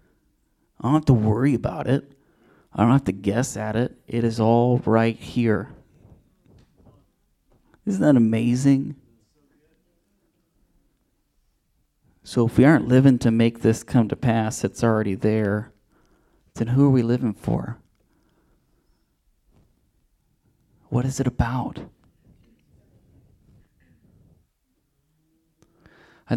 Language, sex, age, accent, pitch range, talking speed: English, male, 30-49, American, 105-120 Hz, 105 wpm